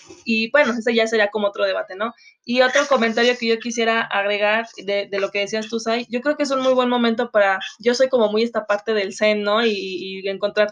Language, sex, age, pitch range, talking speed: Spanish, female, 20-39, 205-235 Hz, 245 wpm